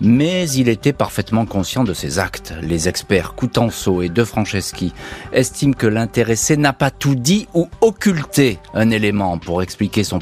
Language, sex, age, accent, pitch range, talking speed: French, male, 40-59, French, 95-135 Hz, 165 wpm